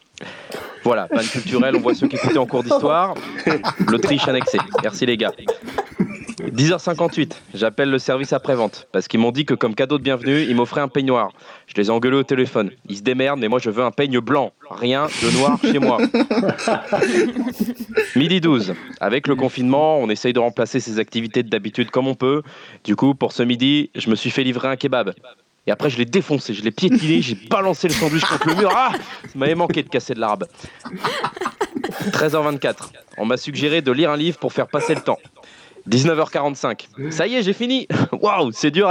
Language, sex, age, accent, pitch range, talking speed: French, male, 20-39, French, 130-165 Hz, 195 wpm